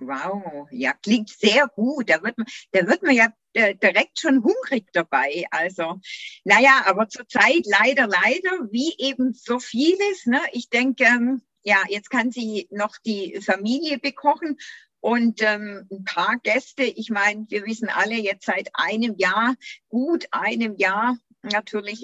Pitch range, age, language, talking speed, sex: 190-245 Hz, 60-79, German, 140 wpm, female